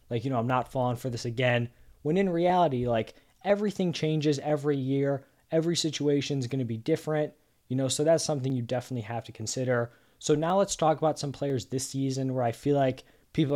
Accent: American